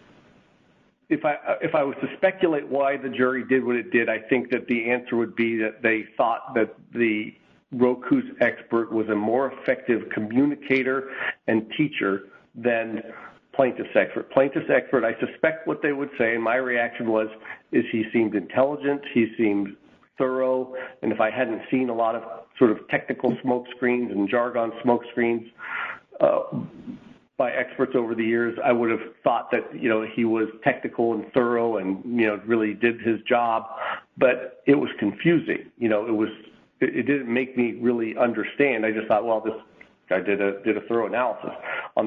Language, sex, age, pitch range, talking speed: English, male, 50-69, 110-130 Hz, 175 wpm